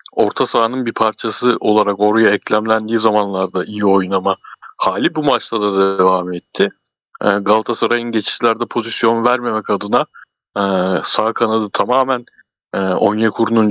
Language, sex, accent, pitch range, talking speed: Turkish, male, native, 105-130 Hz, 110 wpm